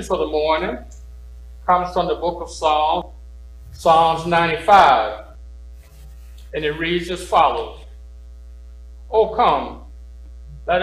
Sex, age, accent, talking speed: male, 60-79, American, 105 wpm